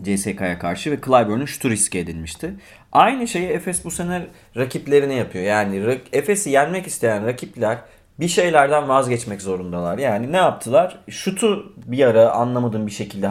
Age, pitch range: 30-49, 110-180 Hz